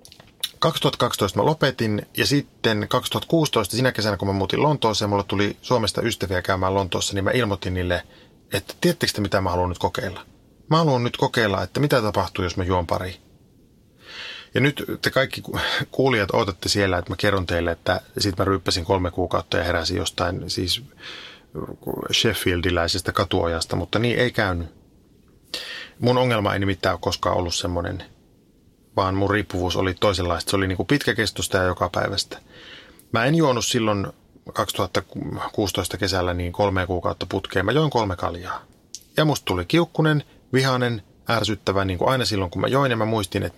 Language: Finnish